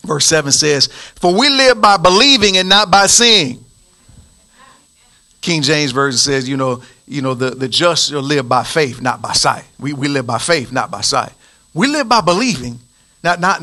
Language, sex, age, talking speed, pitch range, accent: English, male, 40-59, 190 wpm, 165-230 Hz, American